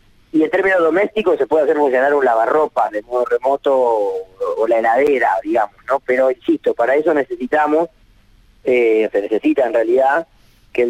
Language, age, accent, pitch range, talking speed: Spanish, 30-49, Argentinian, 120-190 Hz, 170 wpm